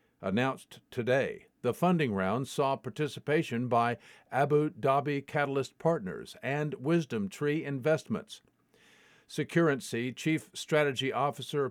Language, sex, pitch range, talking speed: English, male, 130-160 Hz, 100 wpm